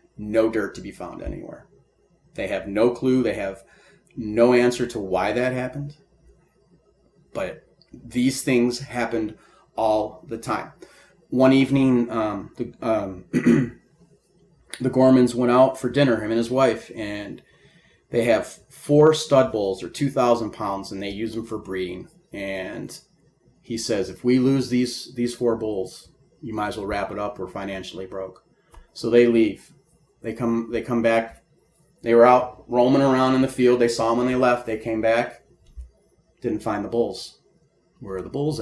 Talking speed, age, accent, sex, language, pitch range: 170 wpm, 30-49, American, male, English, 105-125 Hz